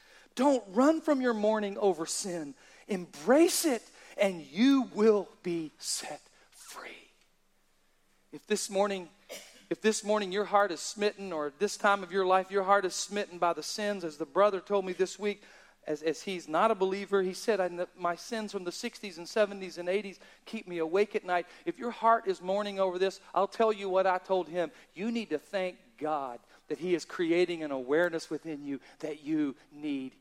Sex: male